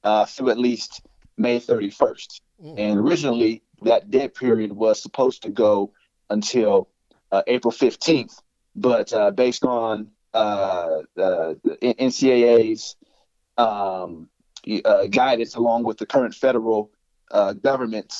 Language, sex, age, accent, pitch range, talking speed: English, male, 30-49, American, 100-115 Hz, 120 wpm